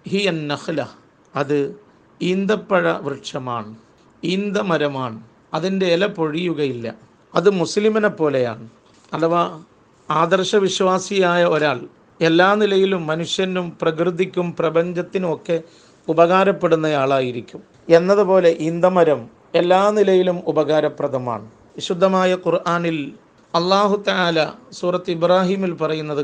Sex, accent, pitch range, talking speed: male, native, 155-190 Hz, 80 wpm